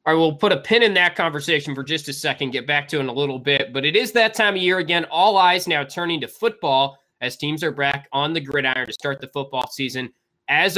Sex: male